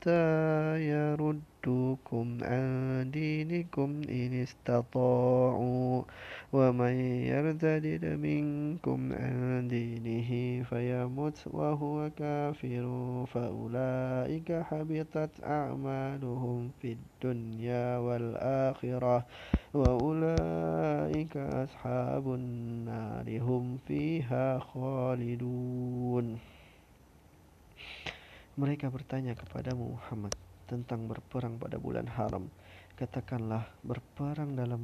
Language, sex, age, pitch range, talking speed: Indonesian, male, 20-39, 120-140 Hz, 65 wpm